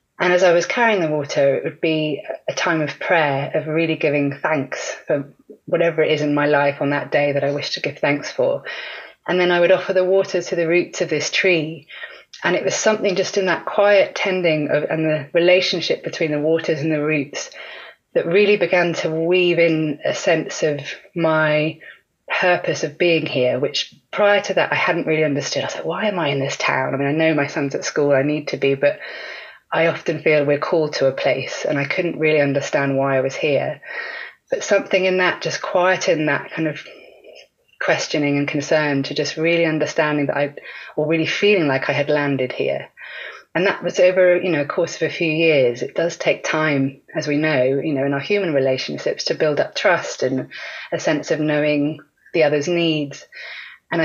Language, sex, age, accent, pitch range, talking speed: English, female, 30-49, British, 145-180 Hz, 210 wpm